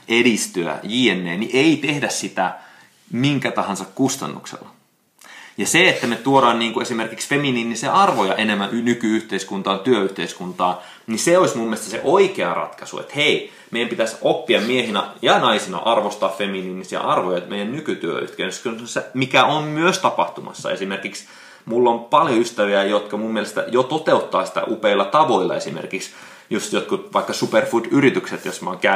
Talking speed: 140 wpm